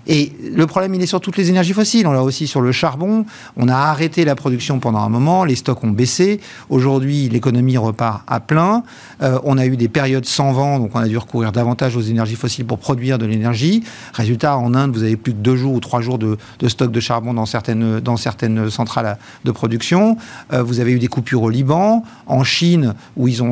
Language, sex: French, male